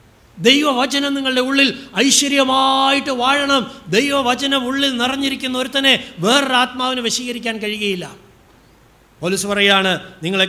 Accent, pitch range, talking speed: native, 165-230 Hz, 90 wpm